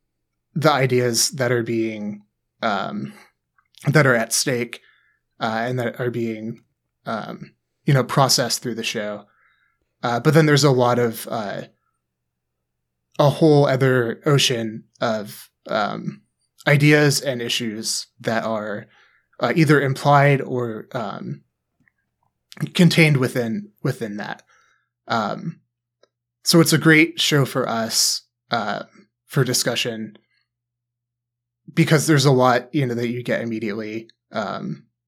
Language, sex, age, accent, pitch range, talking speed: English, male, 20-39, American, 120-145 Hz, 125 wpm